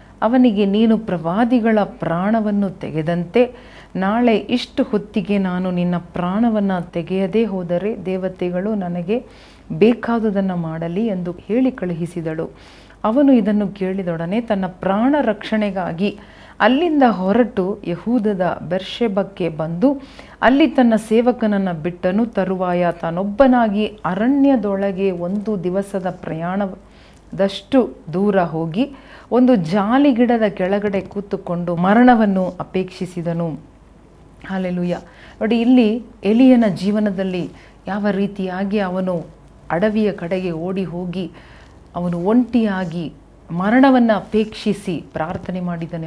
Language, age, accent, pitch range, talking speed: Kannada, 40-59, native, 175-220 Hz, 85 wpm